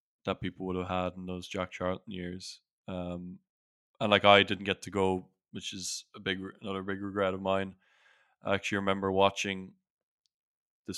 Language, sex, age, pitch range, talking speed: English, male, 20-39, 90-100 Hz, 175 wpm